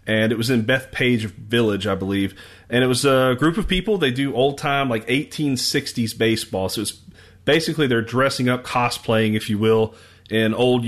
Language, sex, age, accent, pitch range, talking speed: English, male, 30-49, American, 110-130 Hz, 180 wpm